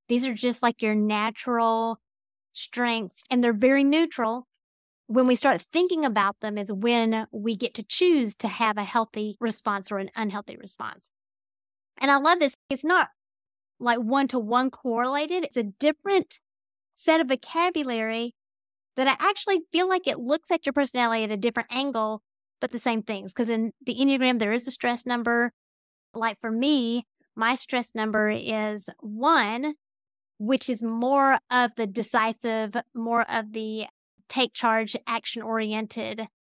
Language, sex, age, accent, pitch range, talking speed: English, female, 30-49, American, 220-265 Hz, 160 wpm